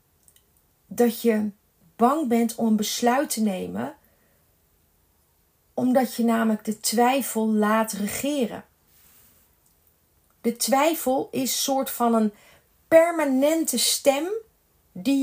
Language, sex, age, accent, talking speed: Dutch, female, 40-59, Dutch, 100 wpm